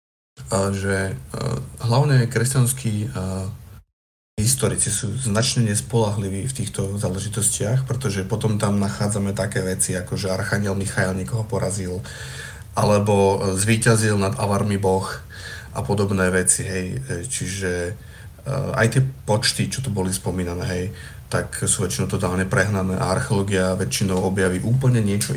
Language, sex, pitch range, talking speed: Slovak, male, 95-115 Hz, 125 wpm